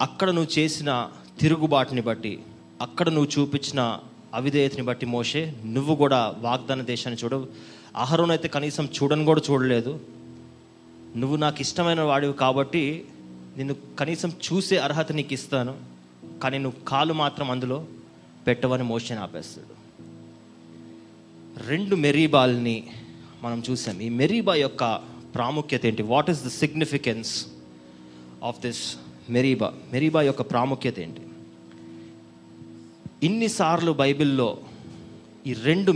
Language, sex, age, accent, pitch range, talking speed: Telugu, male, 20-39, native, 115-145 Hz, 105 wpm